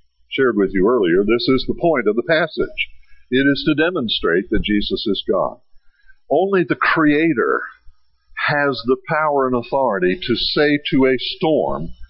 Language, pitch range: English, 105-170 Hz